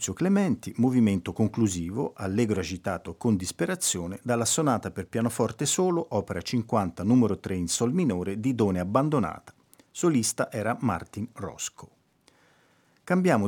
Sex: male